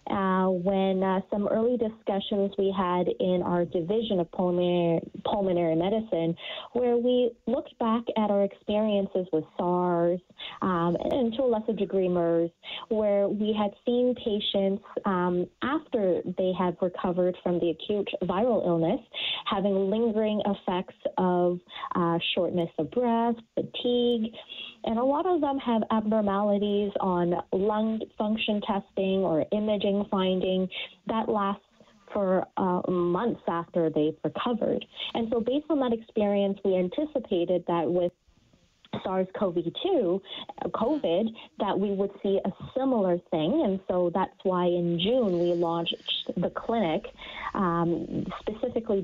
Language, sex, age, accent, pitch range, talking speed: English, female, 30-49, American, 175-220 Hz, 130 wpm